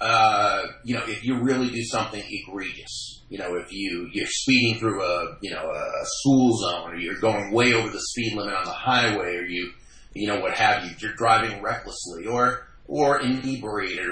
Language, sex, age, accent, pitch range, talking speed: English, male, 30-49, American, 110-130 Hz, 195 wpm